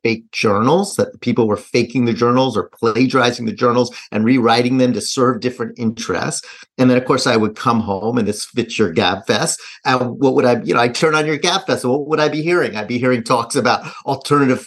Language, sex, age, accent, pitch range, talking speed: English, male, 40-59, American, 120-155 Hz, 235 wpm